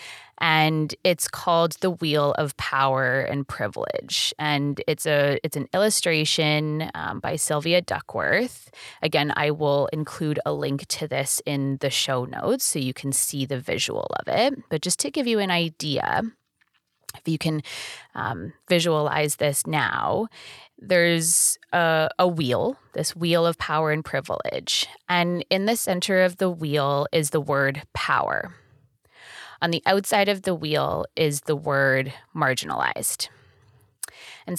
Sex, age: female, 20-39